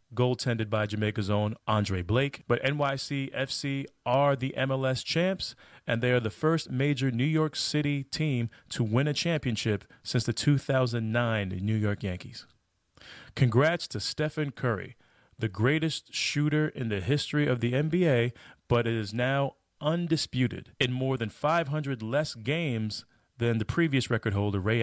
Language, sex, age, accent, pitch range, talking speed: English, male, 30-49, American, 110-145 Hz, 155 wpm